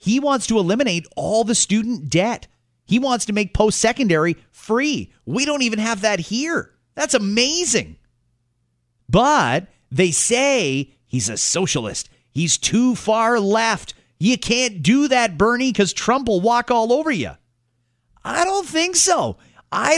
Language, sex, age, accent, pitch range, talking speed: English, male, 30-49, American, 150-230 Hz, 145 wpm